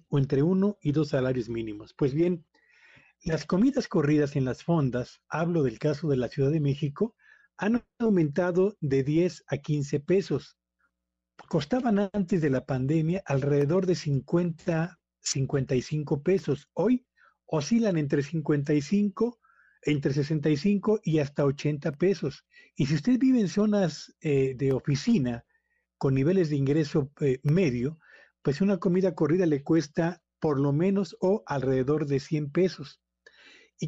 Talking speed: 140 wpm